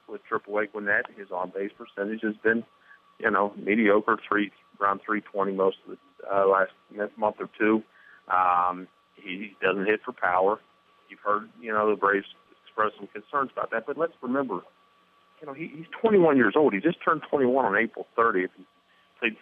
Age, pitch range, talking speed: 40-59, 95-110 Hz, 180 wpm